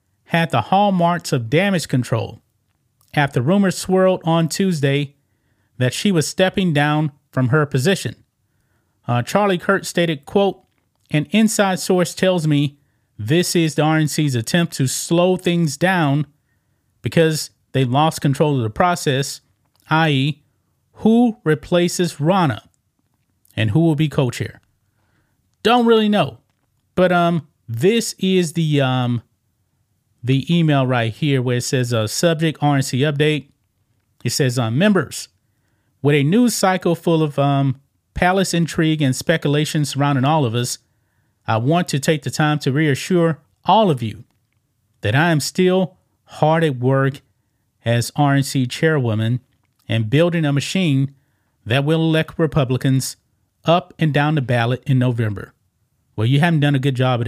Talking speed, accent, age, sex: 145 wpm, American, 30-49, male